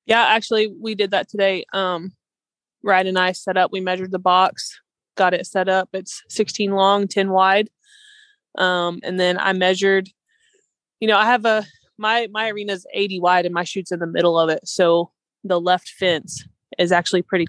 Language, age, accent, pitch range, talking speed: English, 20-39, American, 165-195 Hz, 190 wpm